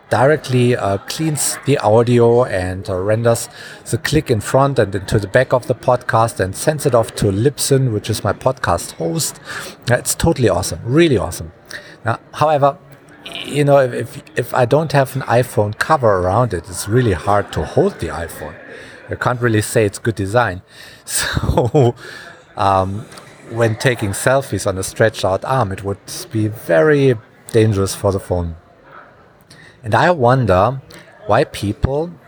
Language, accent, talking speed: English, German, 160 wpm